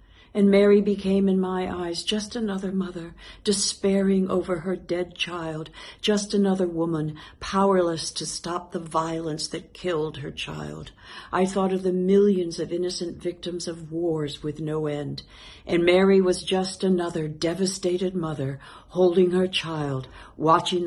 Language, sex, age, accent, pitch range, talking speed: English, female, 60-79, American, 125-175 Hz, 145 wpm